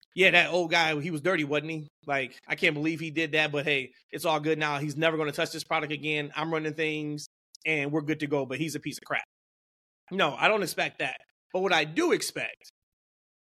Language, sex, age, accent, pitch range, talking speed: English, male, 20-39, American, 155-190 Hz, 240 wpm